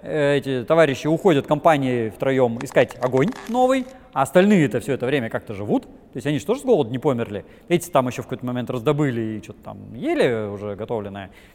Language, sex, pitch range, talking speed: Russian, male, 115-175 Hz, 195 wpm